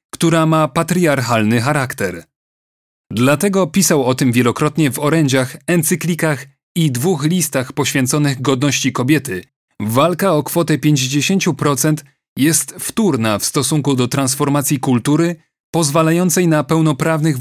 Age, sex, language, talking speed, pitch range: 40-59, male, Polish, 110 wpm, 130-155 Hz